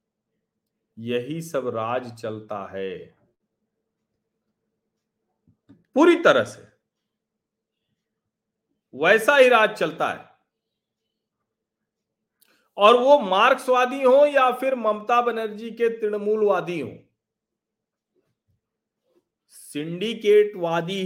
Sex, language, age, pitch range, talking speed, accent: male, Hindi, 40-59, 150-195 Hz, 70 wpm, native